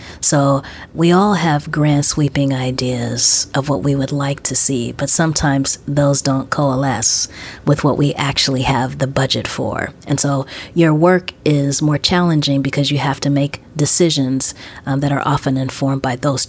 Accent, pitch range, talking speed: American, 135-155 Hz, 170 wpm